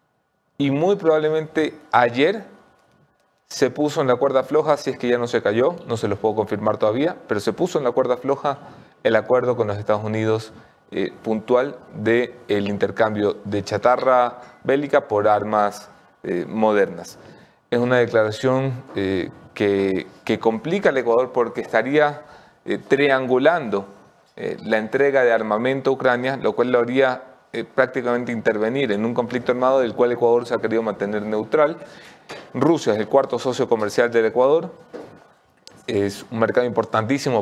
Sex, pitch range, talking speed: male, 105-135 Hz, 155 wpm